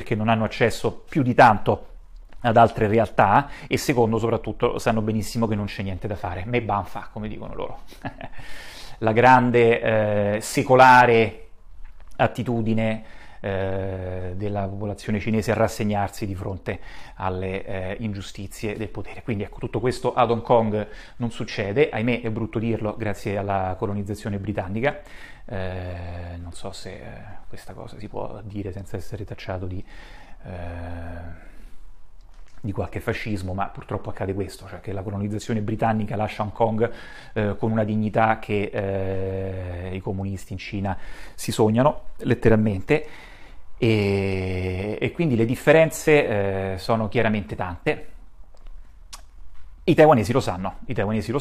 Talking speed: 135 wpm